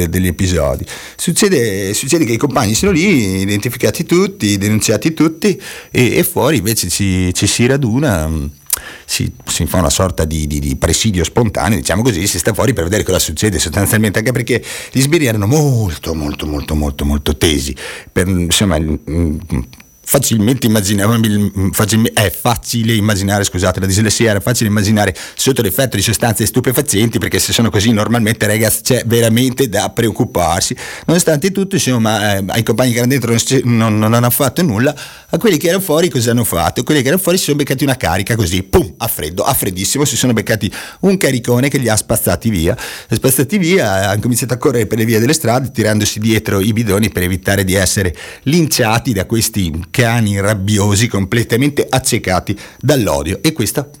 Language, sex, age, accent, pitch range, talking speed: Italian, male, 30-49, native, 95-125 Hz, 180 wpm